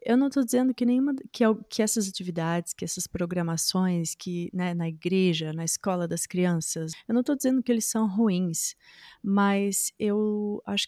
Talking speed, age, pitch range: 175 wpm, 30-49, 175-210 Hz